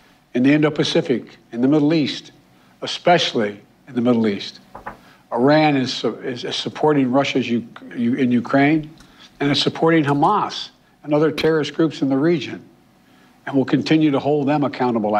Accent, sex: American, male